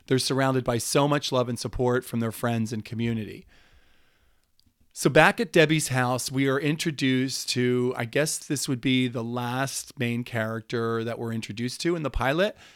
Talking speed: 180 wpm